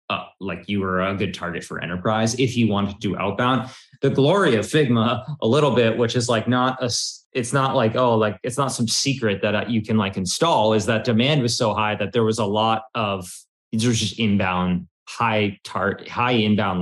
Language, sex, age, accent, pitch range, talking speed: English, male, 20-39, American, 100-120 Hz, 220 wpm